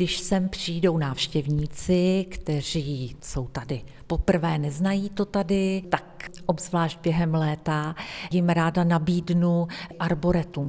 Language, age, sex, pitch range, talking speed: Czech, 40-59, female, 160-190 Hz, 105 wpm